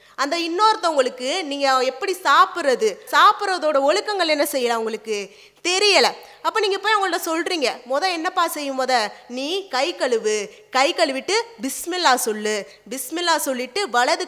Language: English